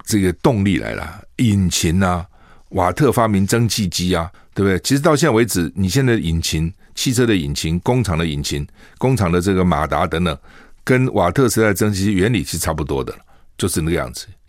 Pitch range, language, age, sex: 85-125 Hz, Chinese, 50-69, male